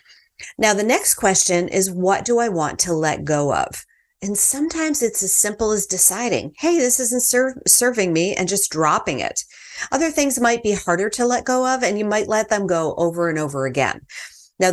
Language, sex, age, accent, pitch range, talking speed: English, female, 40-59, American, 165-225 Hz, 200 wpm